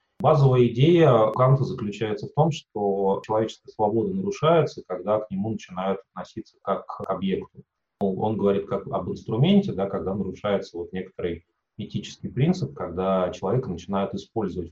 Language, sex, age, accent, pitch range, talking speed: Russian, male, 30-49, native, 95-150 Hz, 130 wpm